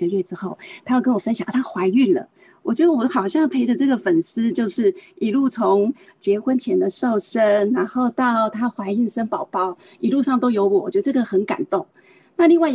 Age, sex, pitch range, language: 30-49, female, 205-315 Hz, Chinese